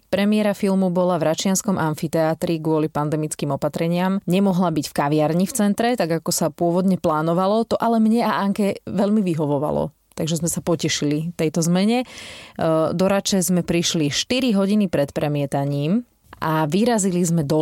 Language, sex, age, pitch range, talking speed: Slovak, female, 20-39, 160-200 Hz, 150 wpm